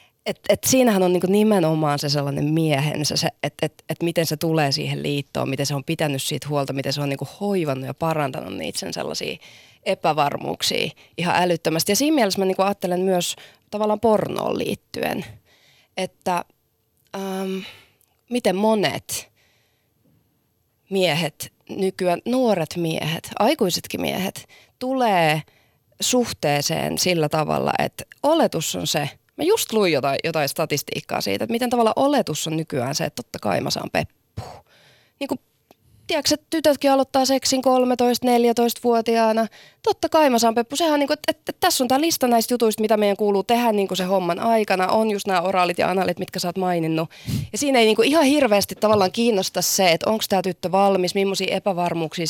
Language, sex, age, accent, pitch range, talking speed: Finnish, female, 20-39, native, 160-235 Hz, 155 wpm